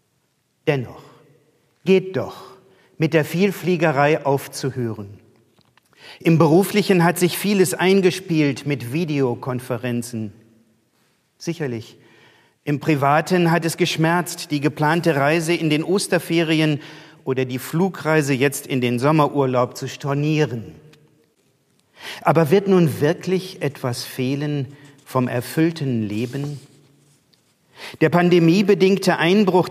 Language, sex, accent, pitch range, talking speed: German, male, German, 135-175 Hz, 95 wpm